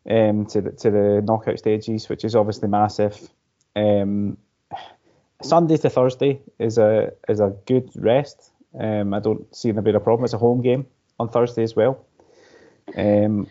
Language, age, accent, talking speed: English, 20-39, British, 170 wpm